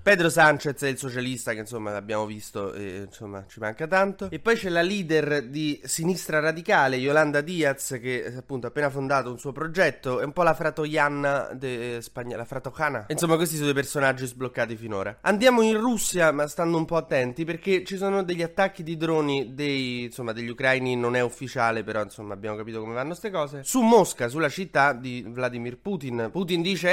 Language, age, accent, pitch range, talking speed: Italian, 20-39, native, 125-160 Hz, 195 wpm